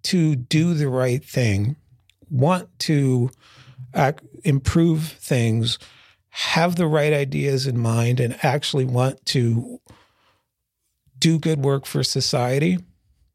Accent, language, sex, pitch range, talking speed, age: American, English, male, 115-155 Hz, 110 wpm, 40-59